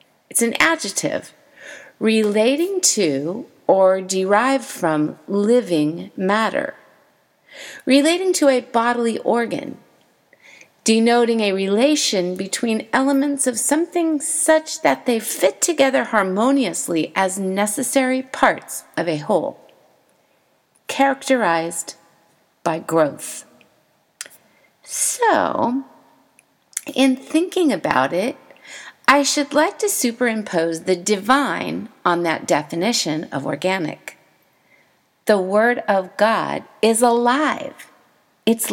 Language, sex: English, female